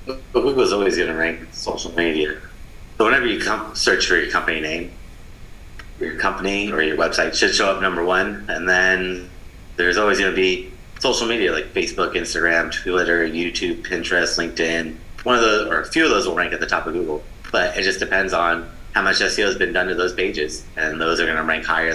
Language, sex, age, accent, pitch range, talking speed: English, male, 30-49, American, 85-95 Hz, 215 wpm